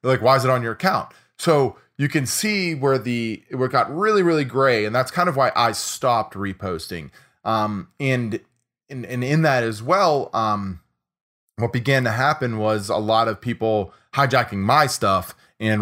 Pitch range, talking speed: 110-135 Hz, 180 wpm